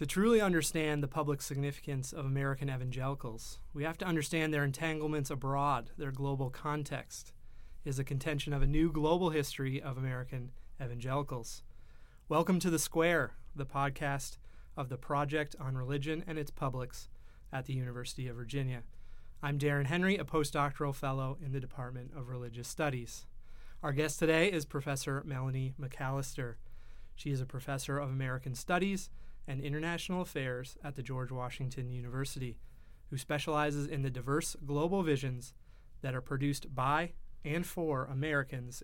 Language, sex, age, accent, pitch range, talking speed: English, male, 30-49, American, 130-150 Hz, 150 wpm